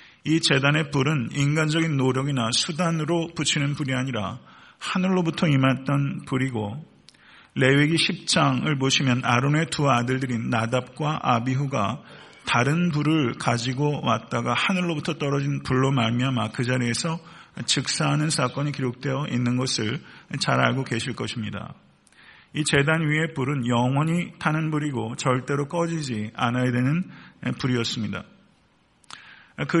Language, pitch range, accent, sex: Korean, 125-155 Hz, native, male